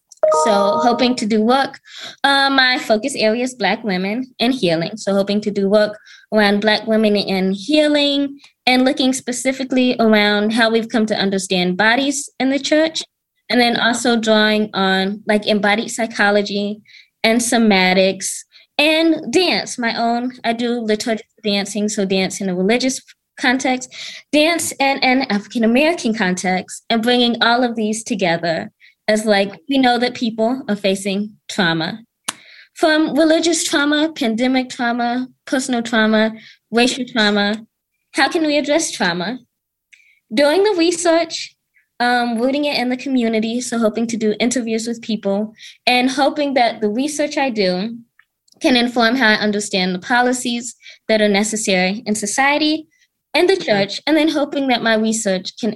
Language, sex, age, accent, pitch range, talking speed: English, female, 20-39, American, 210-265 Hz, 150 wpm